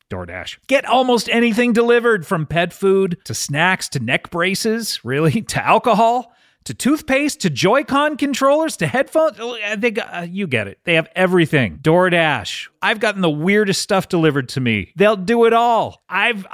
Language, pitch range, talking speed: English, 145-215 Hz, 165 wpm